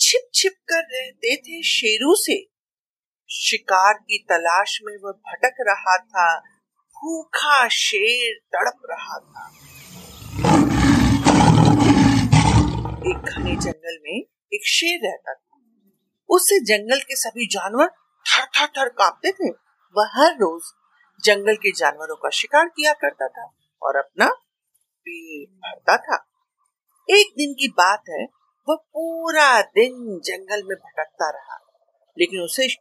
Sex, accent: female, native